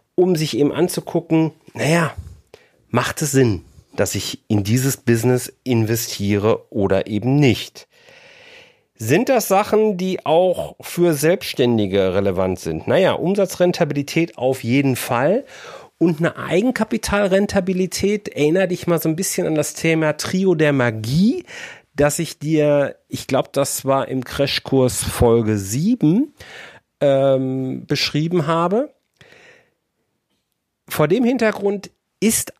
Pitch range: 115-180 Hz